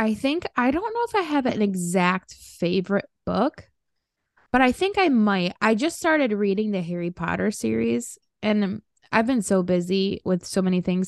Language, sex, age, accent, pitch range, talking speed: English, female, 20-39, American, 180-235 Hz, 190 wpm